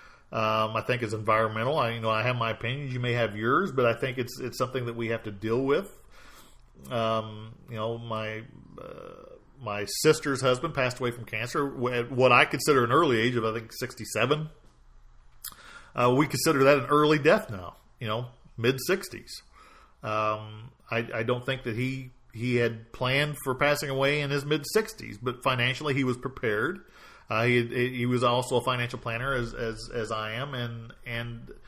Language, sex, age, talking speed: English, male, 40-59, 190 wpm